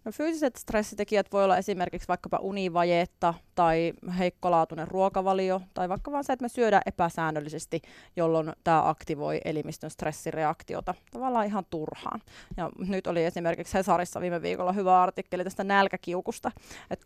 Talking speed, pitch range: 135 wpm, 175-205 Hz